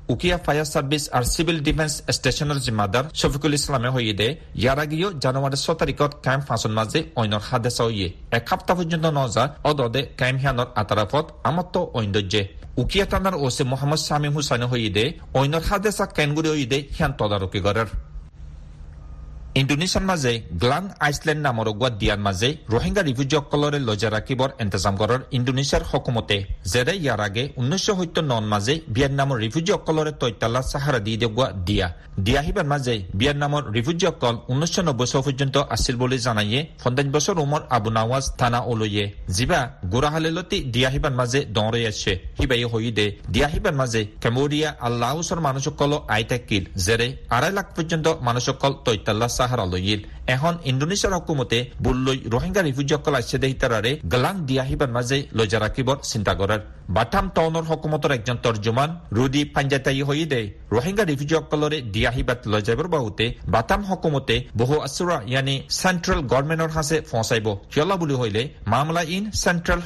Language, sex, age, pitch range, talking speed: Bengali, male, 40-59, 115-155 Hz, 95 wpm